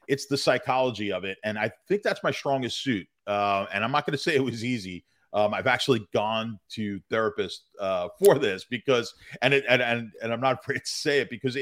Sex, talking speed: male, 210 wpm